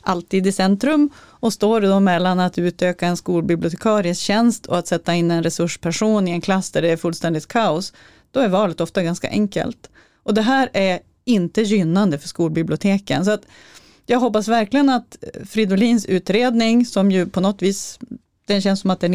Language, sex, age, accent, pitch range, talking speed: Swedish, female, 30-49, native, 175-215 Hz, 180 wpm